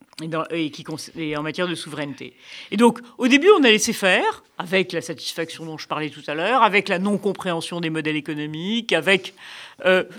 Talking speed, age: 175 wpm, 50-69